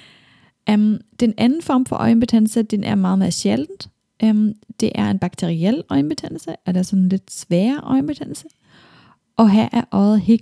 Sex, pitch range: female, 190-230 Hz